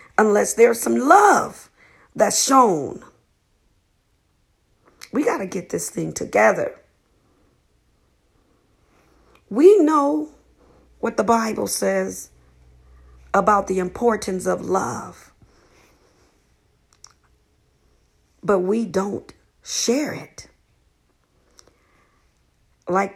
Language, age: English, 40-59